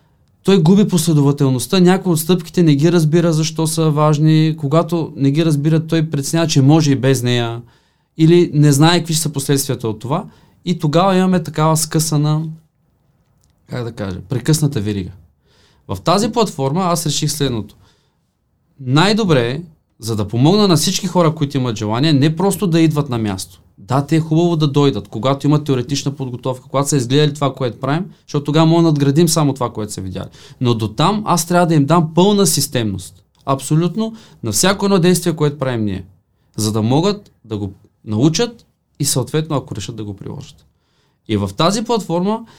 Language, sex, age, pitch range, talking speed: Bulgarian, male, 20-39, 125-165 Hz, 175 wpm